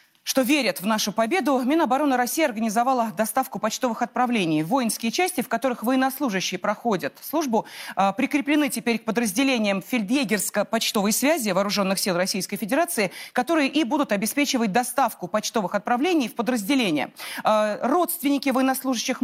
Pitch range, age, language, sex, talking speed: 210-280 Hz, 30-49, Russian, female, 120 wpm